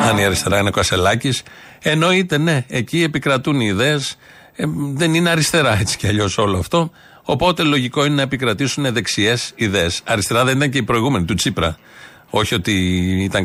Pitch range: 115-150 Hz